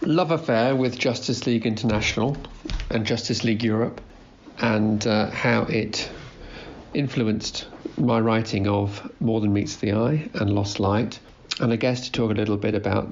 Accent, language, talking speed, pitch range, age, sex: British, English, 160 wpm, 100-120 Hz, 40-59, male